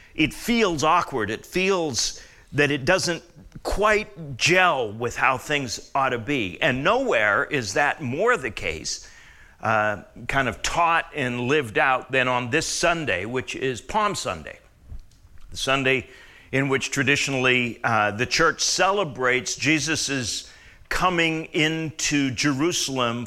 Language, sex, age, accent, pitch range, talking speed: English, male, 50-69, American, 115-150 Hz, 130 wpm